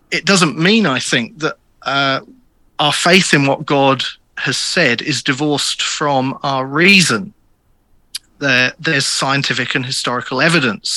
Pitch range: 130-160 Hz